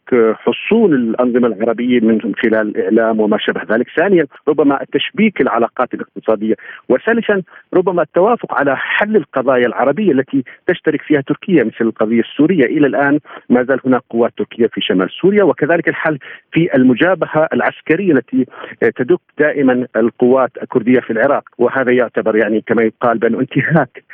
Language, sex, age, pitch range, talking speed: Arabic, male, 50-69, 120-150 Hz, 140 wpm